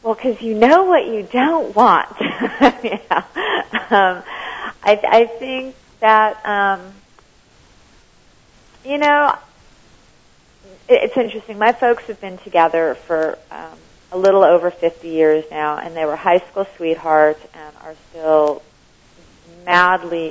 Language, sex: English, female